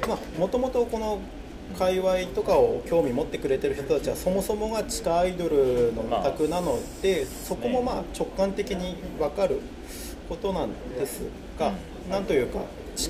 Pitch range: 155-210 Hz